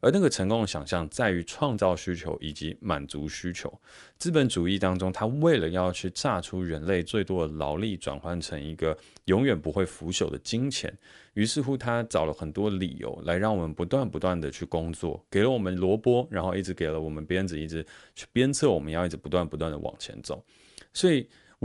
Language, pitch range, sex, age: Chinese, 85-105 Hz, male, 30-49